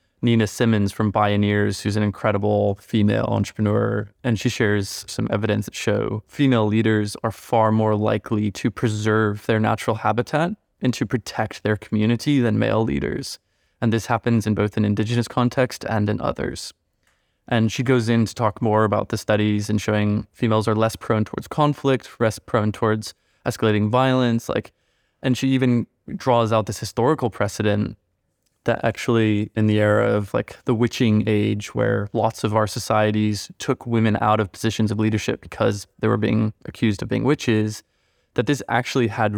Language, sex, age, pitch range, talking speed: English, male, 20-39, 105-120 Hz, 170 wpm